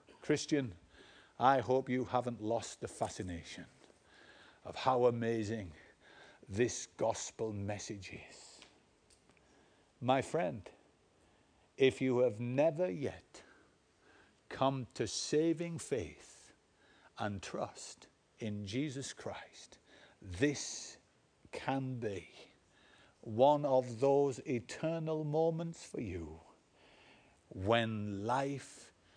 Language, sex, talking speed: English, male, 90 wpm